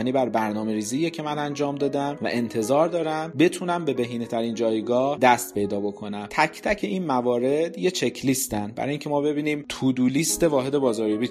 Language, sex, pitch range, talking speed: Persian, male, 110-140 Hz, 175 wpm